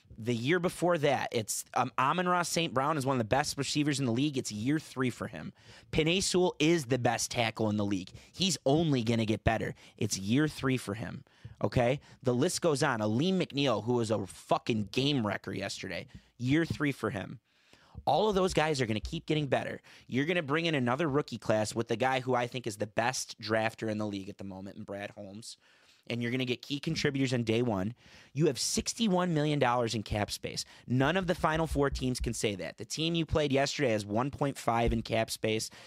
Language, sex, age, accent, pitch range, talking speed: English, male, 30-49, American, 110-145 Hz, 220 wpm